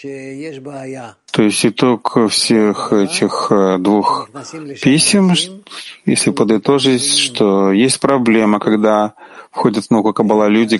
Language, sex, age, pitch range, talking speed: Ukrainian, male, 30-49, 105-135 Hz, 95 wpm